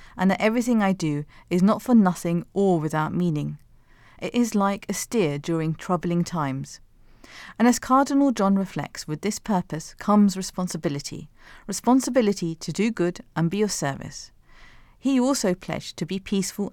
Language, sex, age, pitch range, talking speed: English, female, 40-59, 155-210 Hz, 160 wpm